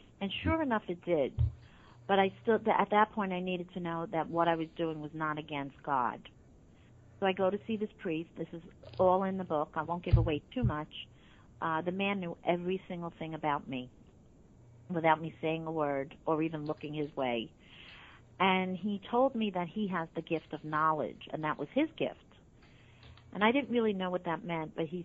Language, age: English, 50-69